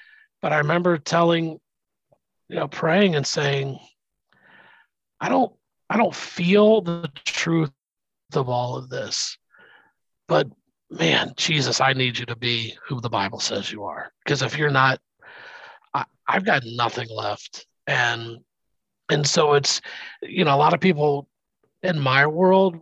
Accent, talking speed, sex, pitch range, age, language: American, 145 wpm, male, 130-165 Hz, 40-59, English